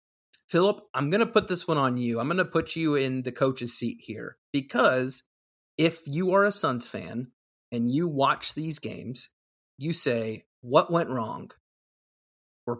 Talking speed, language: 175 wpm, English